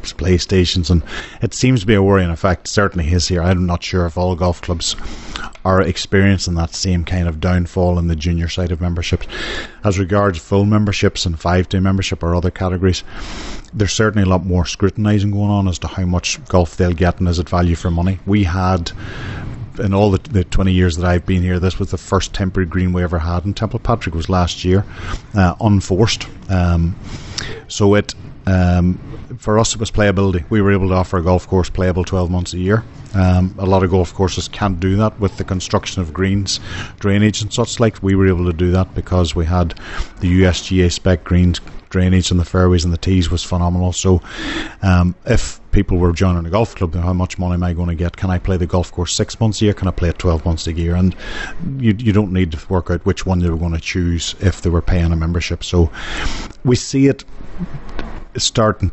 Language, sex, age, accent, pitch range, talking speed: English, male, 30-49, Irish, 90-100 Hz, 220 wpm